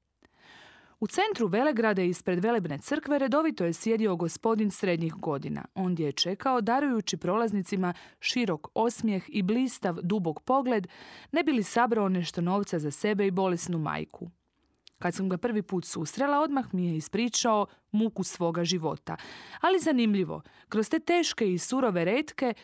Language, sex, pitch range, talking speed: Croatian, female, 175-245 Hz, 145 wpm